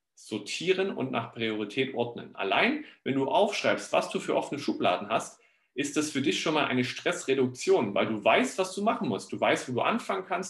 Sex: male